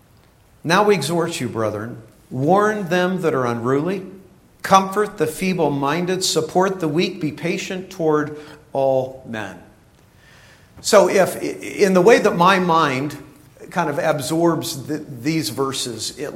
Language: English